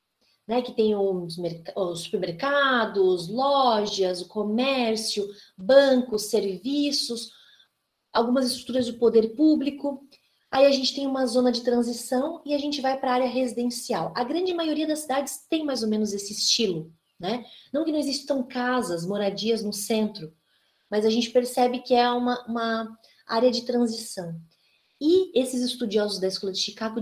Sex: female